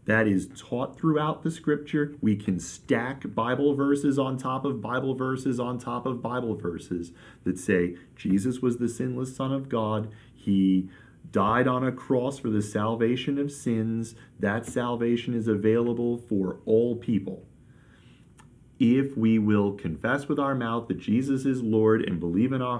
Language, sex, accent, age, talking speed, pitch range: English, male, American, 40-59, 165 wpm, 95-130 Hz